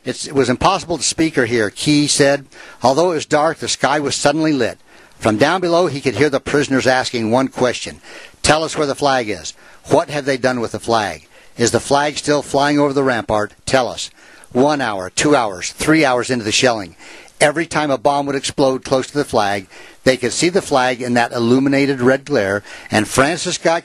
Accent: American